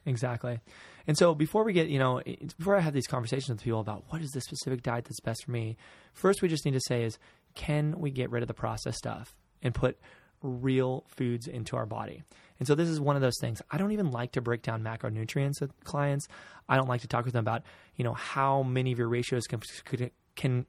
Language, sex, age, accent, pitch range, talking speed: English, male, 20-39, American, 120-145 Hz, 240 wpm